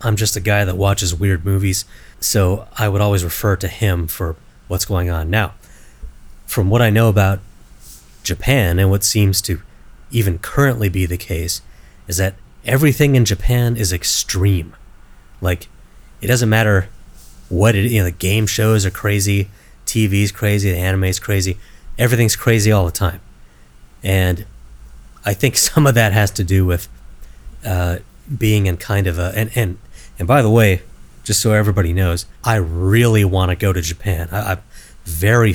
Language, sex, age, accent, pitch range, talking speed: English, male, 30-49, American, 90-105 Hz, 170 wpm